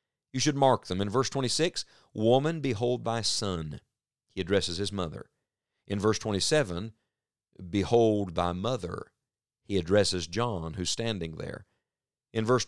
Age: 50-69